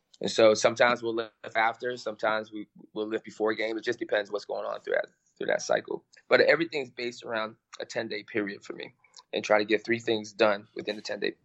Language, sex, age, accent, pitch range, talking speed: Italian, male, 20-39, American, 105-115 Hz, 210 wpm